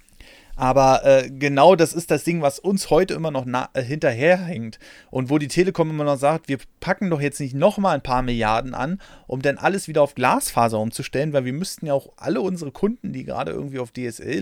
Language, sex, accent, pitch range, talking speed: German, male, German, 125-175 Hz, 210 wpm